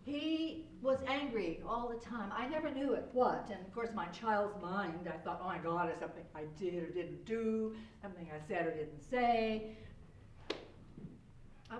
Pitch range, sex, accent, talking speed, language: 165-265 Hz, female, American, 185 wpm, English